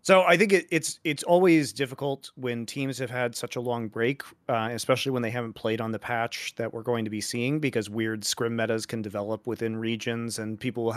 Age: 30-49